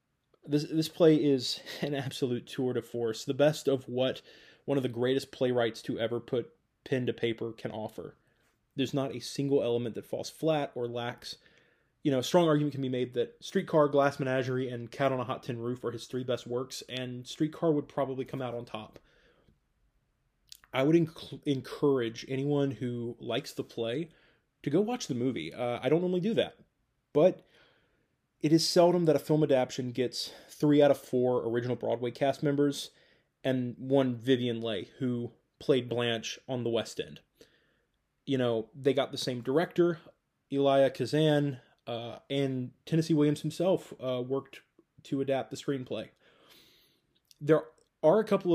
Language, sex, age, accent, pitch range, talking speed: English, male, 20-39, American, 125-150 Hz, 175 wpm